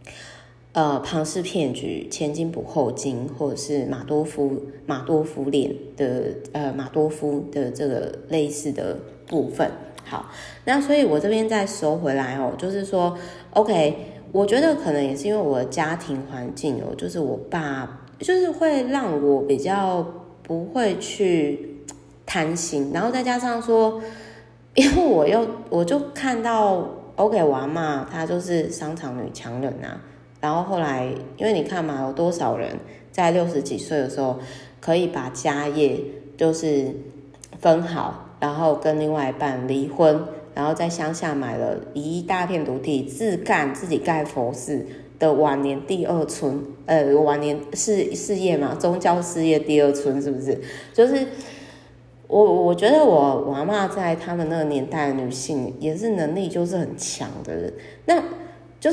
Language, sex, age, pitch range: Chinese, female, 20-39, 140-180 Hz